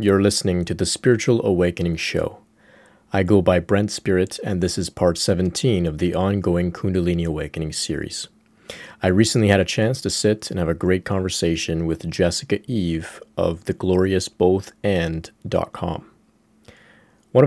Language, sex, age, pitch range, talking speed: English, male, 30-49, 85-105 Hz, 140 wpm